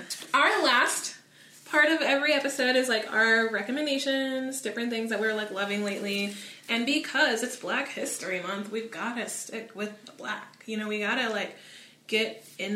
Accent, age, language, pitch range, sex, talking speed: American, 20-39, English, 205-240 Hz, female, 170 wpm